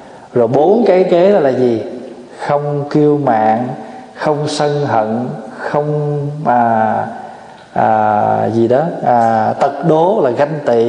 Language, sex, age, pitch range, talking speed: Vietnamese, male, 20-39, 120-160 Hz, 130 wpm